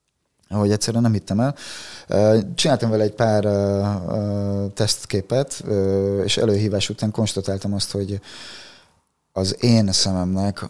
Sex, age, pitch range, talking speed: male, 30-49, 90-105 Hz, 105 wpm